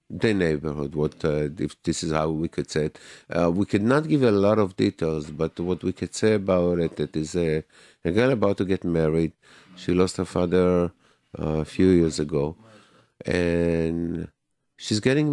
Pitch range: 85-100 Hz